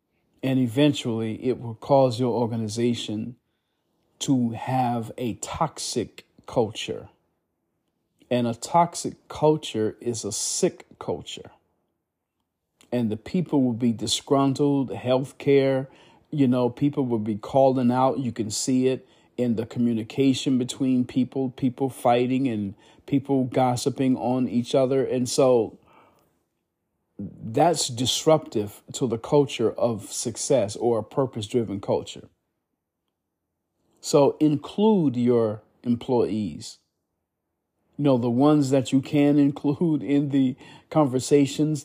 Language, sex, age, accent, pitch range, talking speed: English, male, 40-59, American, 115-140 Hz, 115 wpm